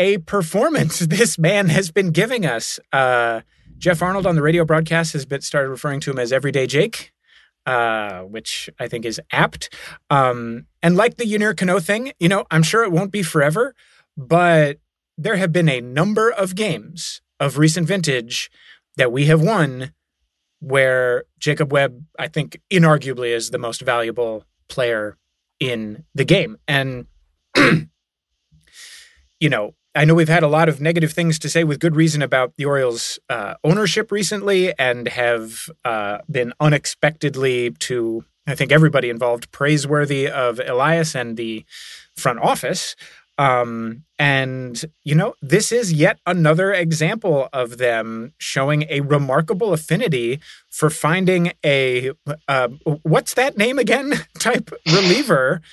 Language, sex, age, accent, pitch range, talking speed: English, male, 30-49, American, 125-170 Hz, 145 wpm